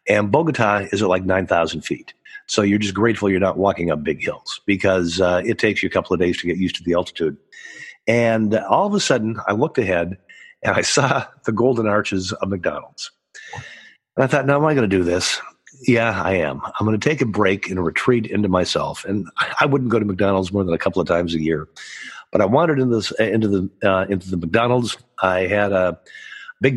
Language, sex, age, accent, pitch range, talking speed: English, male, 50-69, American, 95-130 Hz, 215 wpm